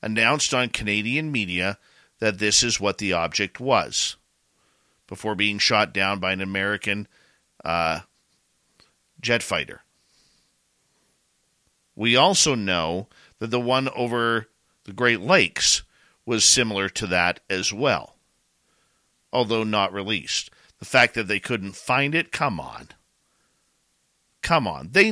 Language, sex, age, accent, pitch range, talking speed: English, male, 50-69, American, 80-130 Hz, 125 wpm